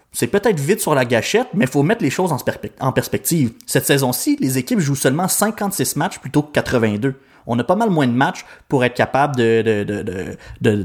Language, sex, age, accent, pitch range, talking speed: French, male, 30-49, Canadian, 120-160 Hz, 220 wpm